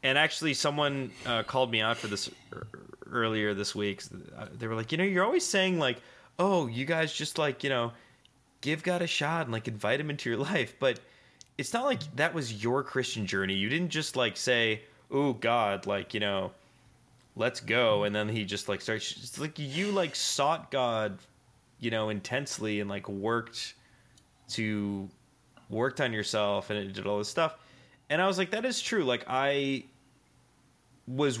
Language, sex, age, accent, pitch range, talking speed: English, male, 20-39, American, 110-135 Hz, 185 wpm